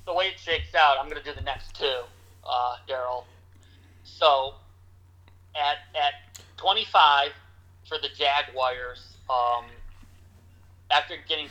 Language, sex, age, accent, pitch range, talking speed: English, male, 40-59, American, 90-145 Hz, 125 wpm